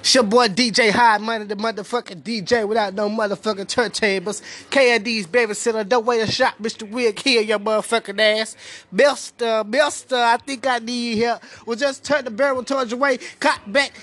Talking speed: 190 wpm